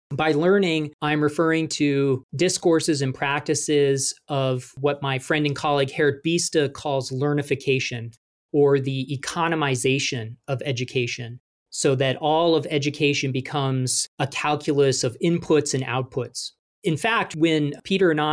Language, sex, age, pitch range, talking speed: English, male, 40-59, 135-155 Hz, 130 wpm